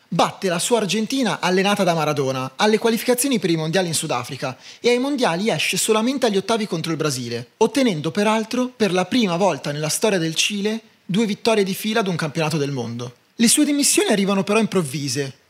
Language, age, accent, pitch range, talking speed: Italian, 30-49, native, 155-230 Hz, 190 wpm